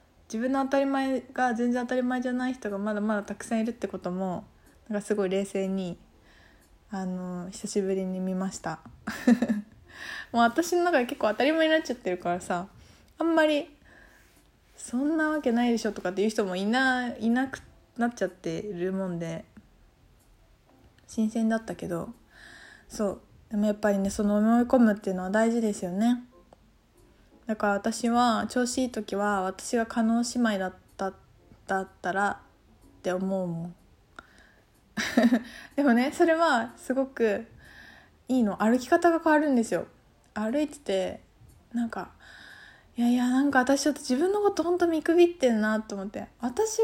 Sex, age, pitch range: female, 20-39, 195-270 Hz